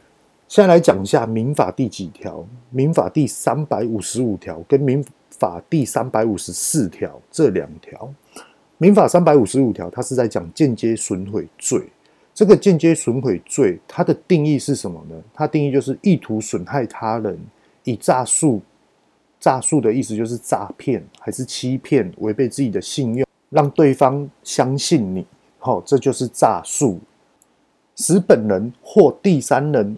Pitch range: 115-150 Hz